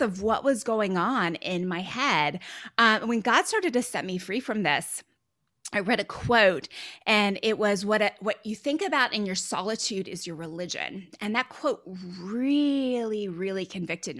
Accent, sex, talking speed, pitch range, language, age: American, female, 180 wpm, 190-250 Hz, English, 20-39